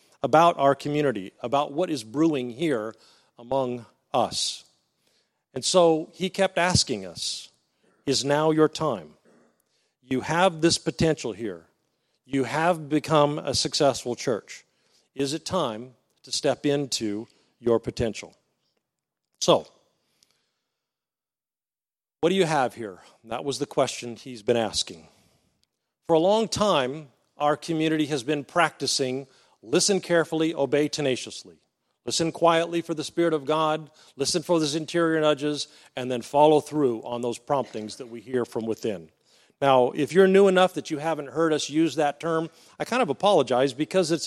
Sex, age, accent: male, 40-59, American